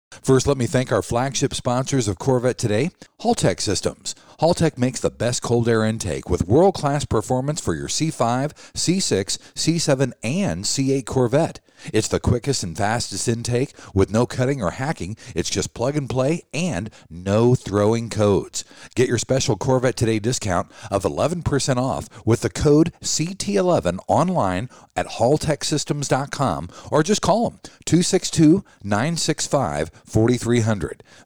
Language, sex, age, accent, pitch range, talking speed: English, male, 50-69, American, 105-145 Hz, 135 wpm